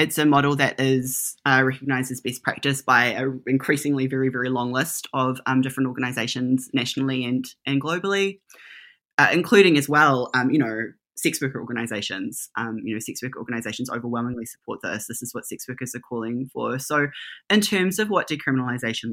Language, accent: English, Australian